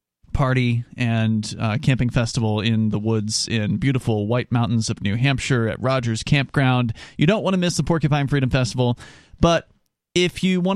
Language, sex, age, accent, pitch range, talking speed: English, male, 30-49, American, 120-165 Hz, 175 wpm